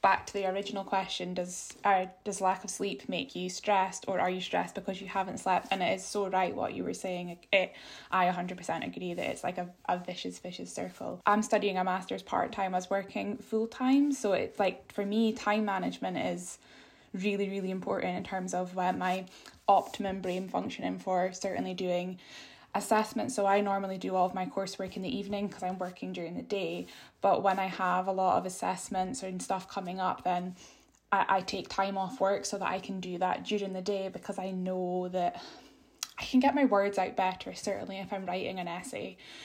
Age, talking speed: 10-29, 210 wpm